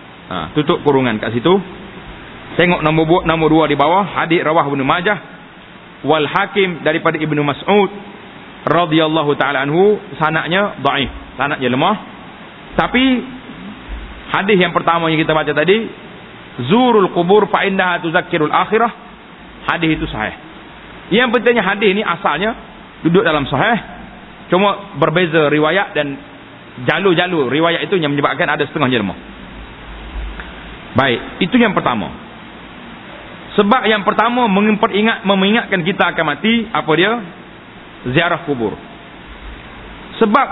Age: 40-59